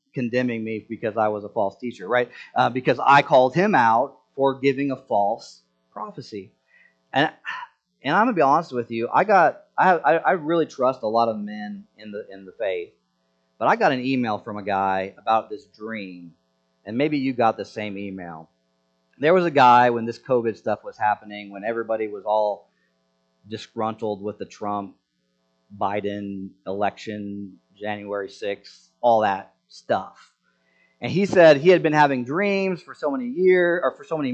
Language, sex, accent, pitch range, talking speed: English, male, American, 100-140 Hz, 180 wpm